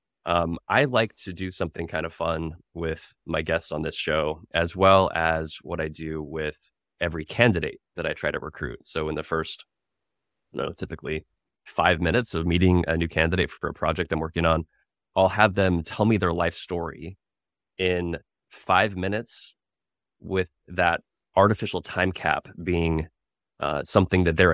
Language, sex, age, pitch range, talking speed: English, male, 20-39, 80-95 Hz, 170 wpm